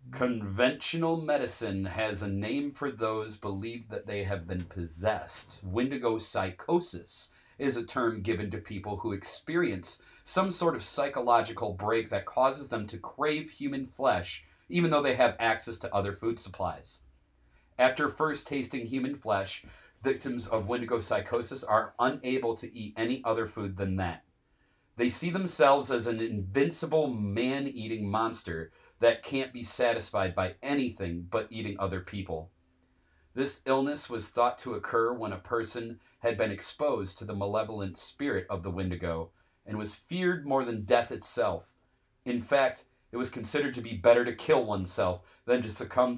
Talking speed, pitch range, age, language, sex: 155 wpm, 100-130 Hz, 30-49, English, male